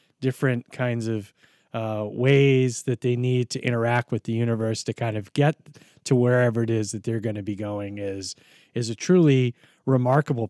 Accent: American